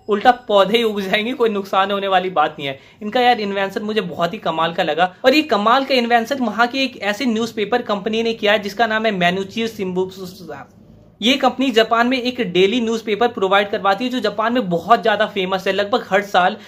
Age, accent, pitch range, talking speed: 20-39, native, 180-225 Hz, 95 wpm